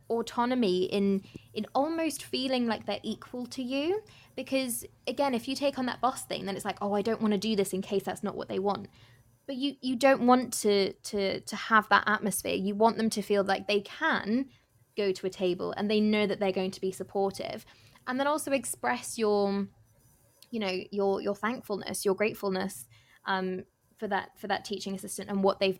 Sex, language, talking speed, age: female, English, 210 wpm, 20-39